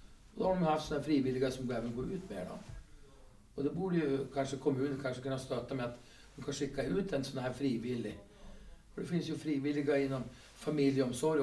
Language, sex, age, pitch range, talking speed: Swedish, male, 40-59, 120-155 Hz, 205 wpm